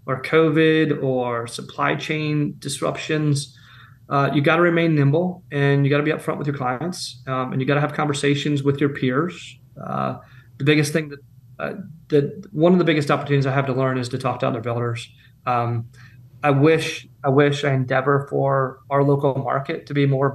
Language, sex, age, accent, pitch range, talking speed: English, male, 30-49, American, 130-150 Hz, 200 wpm